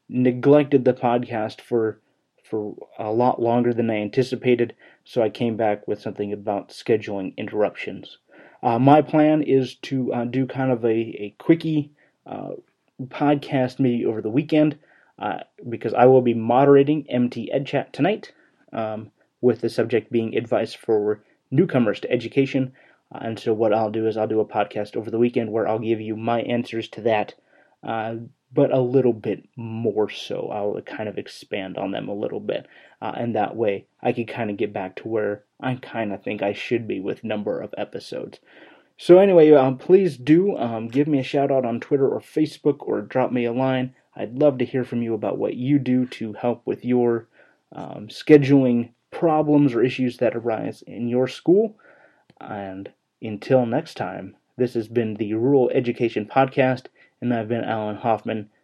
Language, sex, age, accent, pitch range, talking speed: English, male, 30-49, American, 110-135 Hz, 180 wpm